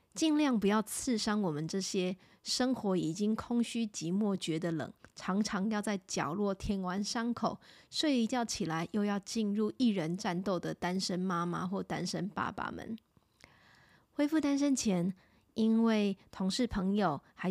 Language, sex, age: Chinese, female, 20-39